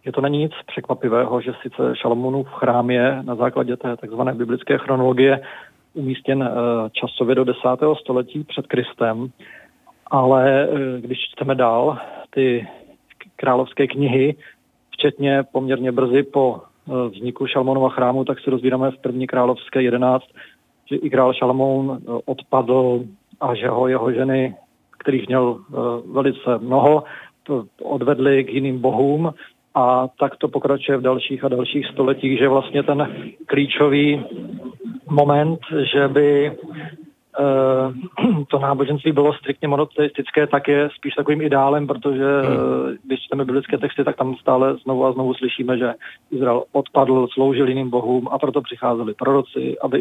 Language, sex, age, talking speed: Czech, male, 40-59, 135 wpm